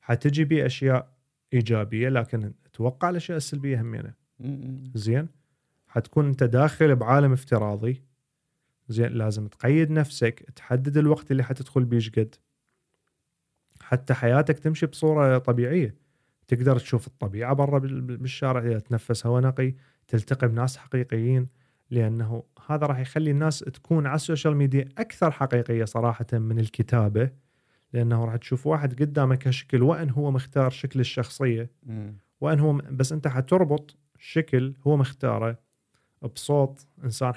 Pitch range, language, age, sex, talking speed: 120-145 Hz, Arabic, 30-49, male, 120 wpm